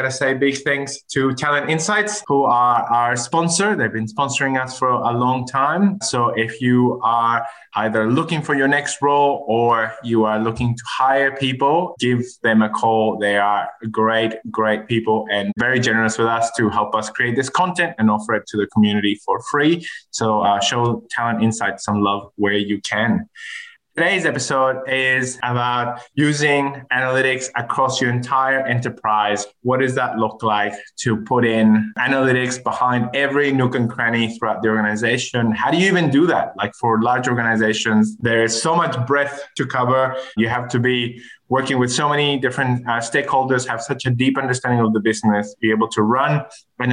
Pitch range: 110-135 Hz